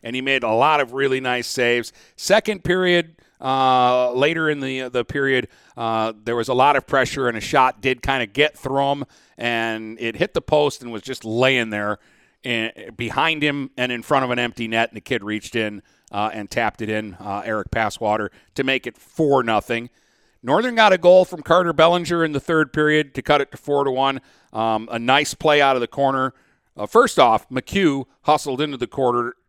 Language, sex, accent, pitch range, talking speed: English, male, American, 110-135 Hz, 215 wpm